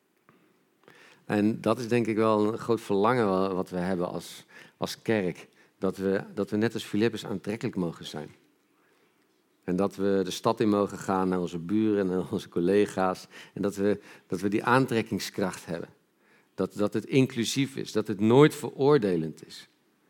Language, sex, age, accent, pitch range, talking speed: Dutch, male, 50-69, Dutch, 100-130 Hz, 170 wpm